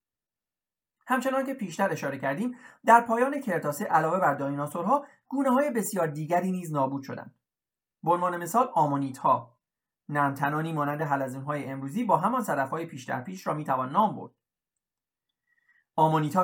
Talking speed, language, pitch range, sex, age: 130 wpm, Persian, 145-230 Hz, male, 40-59